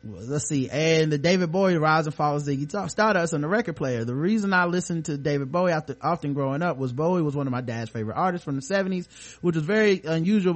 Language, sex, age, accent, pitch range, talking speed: English, male, 20-39, American, 130-170 Hz, 245 wpm